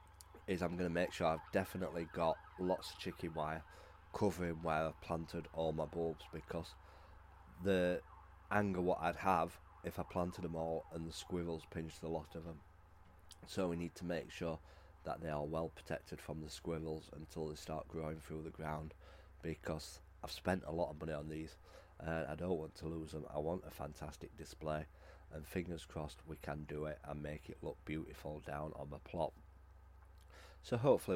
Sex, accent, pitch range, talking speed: male, British, 80-90 Hz, 190 wpm